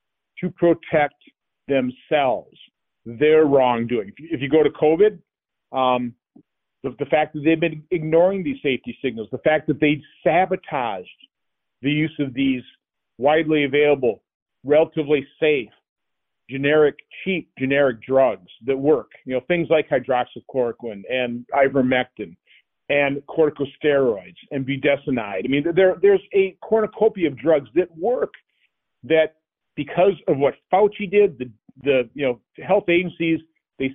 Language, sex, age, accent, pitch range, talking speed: English, male, 40-59, American, 130-160 Hz, 130 wpm